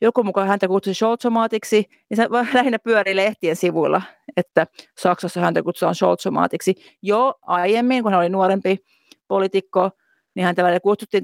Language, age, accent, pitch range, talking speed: Finnish, 30-49, native, 180-220 Hz, 140 wpm